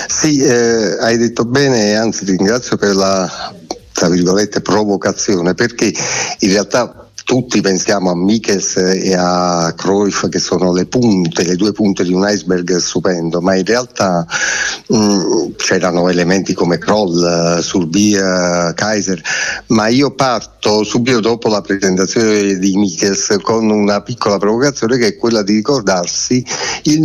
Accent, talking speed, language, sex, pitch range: native, 150 wpm, Italian, male, 95-115 Hz